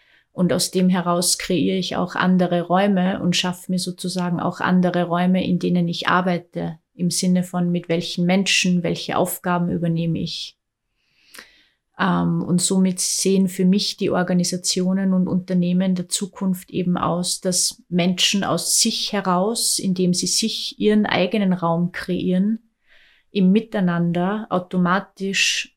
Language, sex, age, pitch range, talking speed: German, female, 30-49, 180-195 Hz, 135 wpm